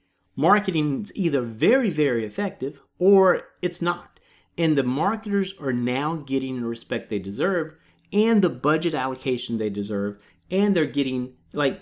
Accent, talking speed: American, 145 wpm